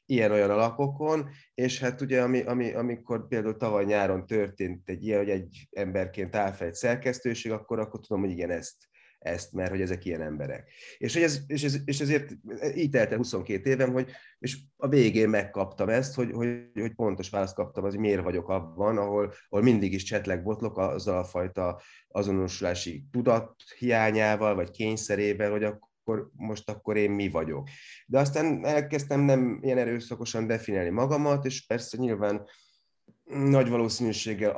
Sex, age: male, 30-49